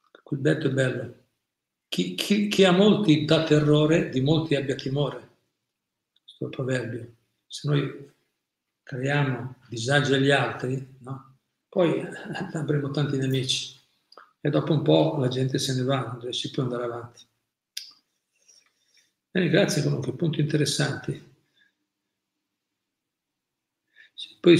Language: Italian